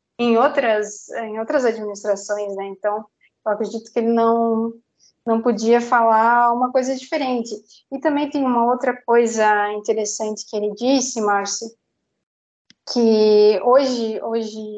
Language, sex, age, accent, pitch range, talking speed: Portuguese, female, 20-39, Brazilian, 215-250 Hz, 130 wpm